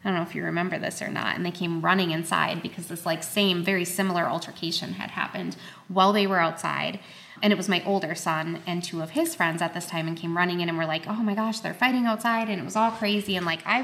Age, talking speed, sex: 20-39, 270 wpm, female